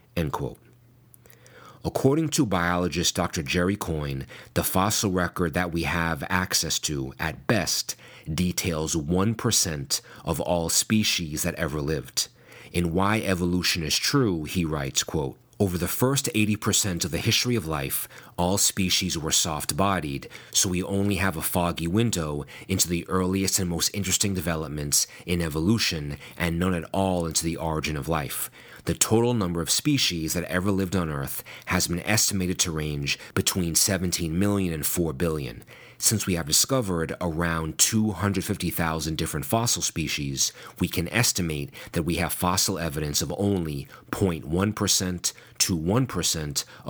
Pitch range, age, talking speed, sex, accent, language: 80-100 Hz, 30-49, 145 wpm, male, American, English